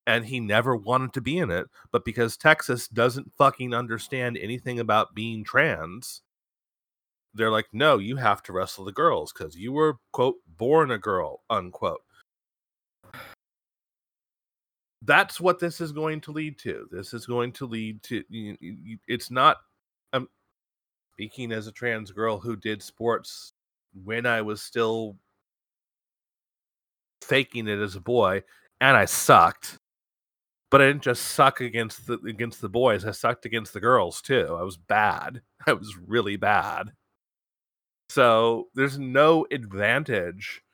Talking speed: 145 wpm